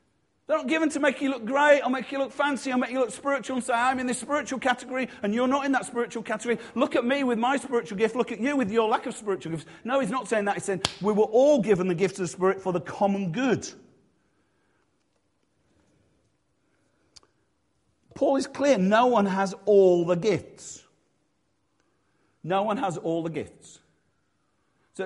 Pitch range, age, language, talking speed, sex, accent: 165-240 Hz, 50-69, English, 200 wpm, male, British